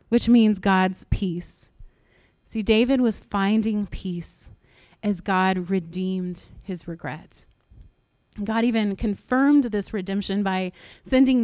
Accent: American